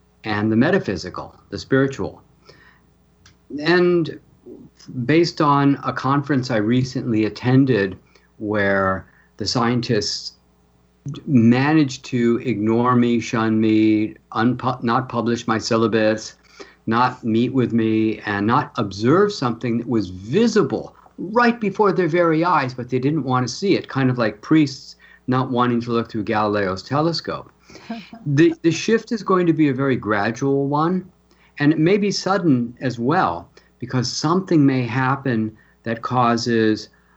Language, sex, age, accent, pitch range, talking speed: English, male, 50-69, American, 110-145 Hz, 135 wpm